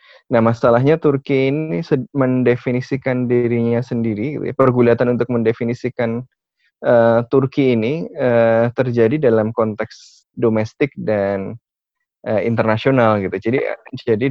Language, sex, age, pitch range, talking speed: Indonesian, male, 20-39, 115-130 Hz, 100 wpm